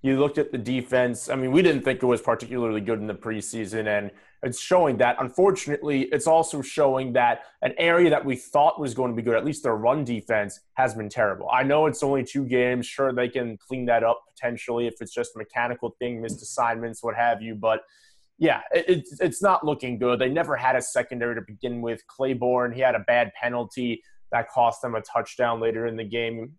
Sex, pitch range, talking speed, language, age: male, 115-145 Hz, 220 wpm, English, 20-39